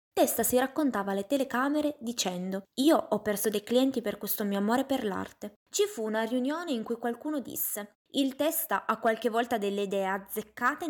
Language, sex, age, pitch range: Italian, female, 20-39, 205-280 Hz